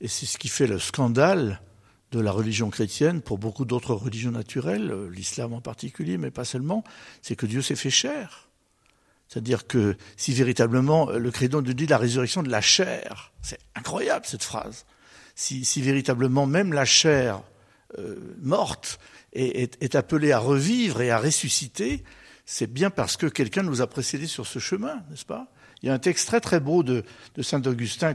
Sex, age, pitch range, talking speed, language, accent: male, 60-79, 120-155 Hz, 185 wpm, French, French